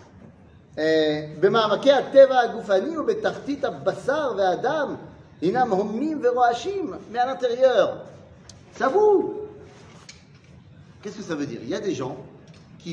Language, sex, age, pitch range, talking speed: French, male, 40-59, 170-245 Hz, 80 wpm